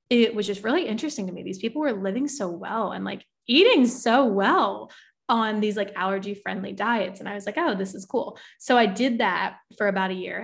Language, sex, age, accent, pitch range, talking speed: English, female, 20-39, American, 195-225 Hz, 230 wpm